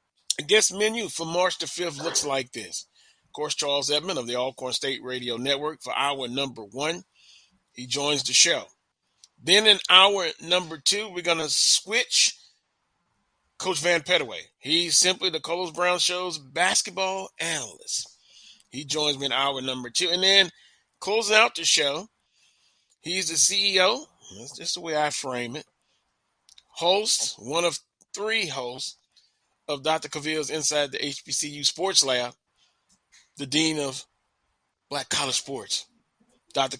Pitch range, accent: 135-185 Hz, American